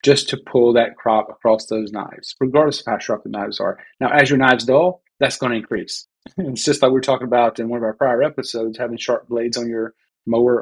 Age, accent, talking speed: 30-49, American, 235 wpm